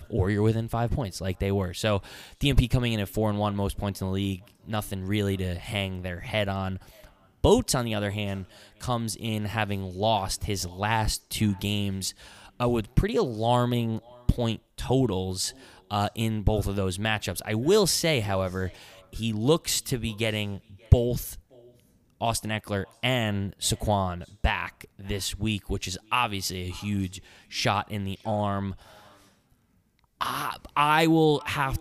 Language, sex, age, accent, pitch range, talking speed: English, male, 20-39, American, 95-115 Hz, 155 wpm